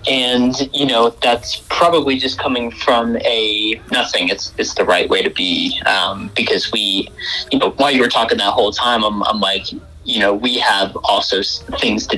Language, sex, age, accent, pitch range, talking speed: English, male, 30-49, American, 105-145 Hz, 190 wpm